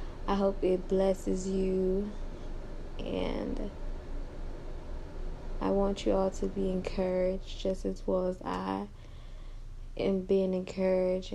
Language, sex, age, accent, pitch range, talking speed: English, female, 20-39, American, 180-200 Hz, 110 wpm